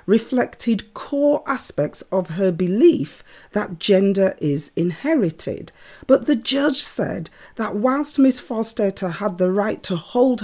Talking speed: 130 wpm